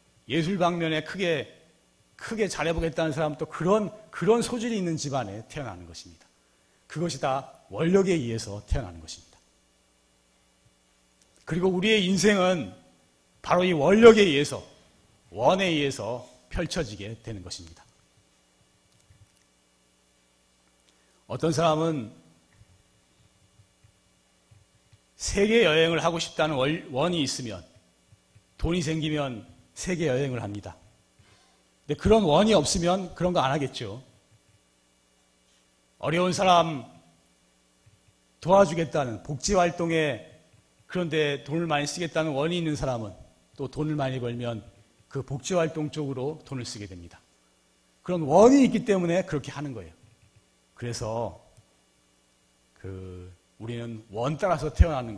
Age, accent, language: 40-59, native, Korean